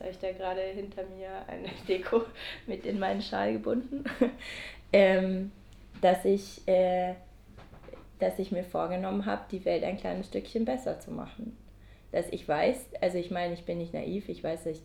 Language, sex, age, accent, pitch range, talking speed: German, female, 20-39, German, 170-205 Hz, 180 wpm